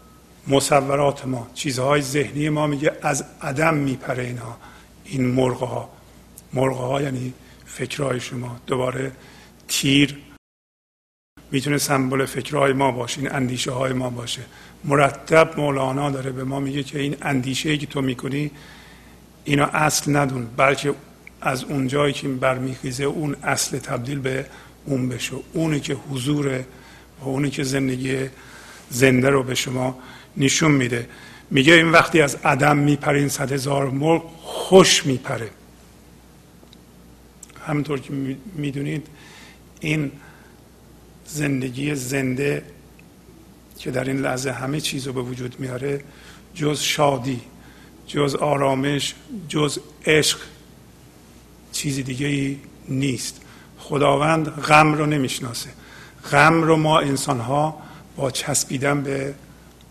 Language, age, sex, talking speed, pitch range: Persian, 50-69, male, 115 wpm, 130-145 Hz